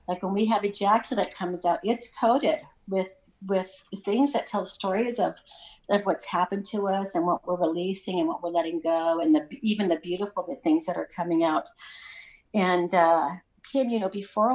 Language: English